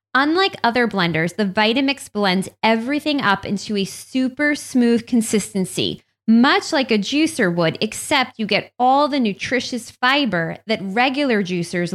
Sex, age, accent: female, 20-39, American